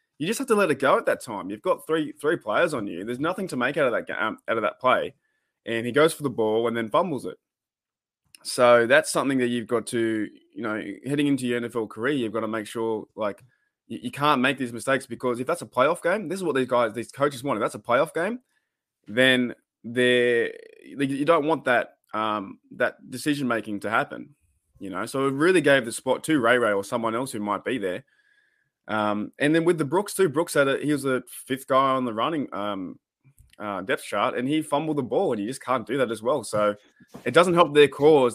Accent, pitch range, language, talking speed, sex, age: Australian, 115-145 Hz, English, 240 wpm, male, 20-39